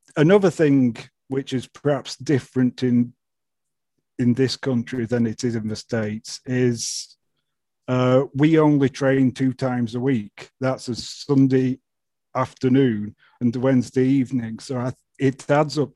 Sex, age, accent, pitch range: male, 40-59, British, 120-135 Hz